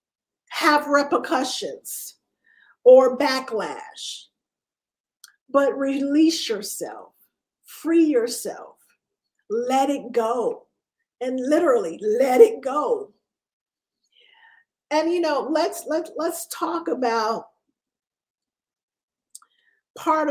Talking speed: 75 wpm